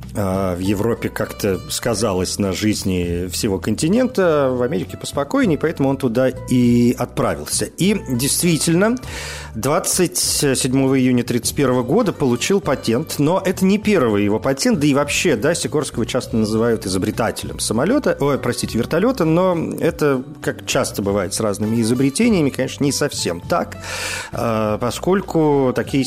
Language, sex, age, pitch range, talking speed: Russian, male, 40-59, 110-140 Hz, 130 wpm